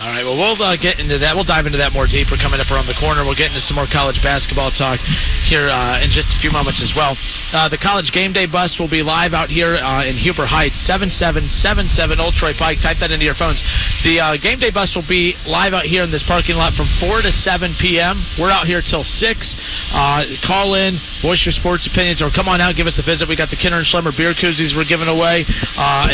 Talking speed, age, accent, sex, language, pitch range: 255 wpm, 40-59, American, male, English, 150-175 Hz